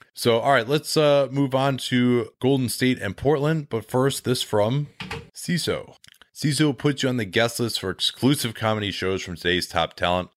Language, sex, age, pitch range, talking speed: English, male, 20-39, 90-120 Hz, 185 wpm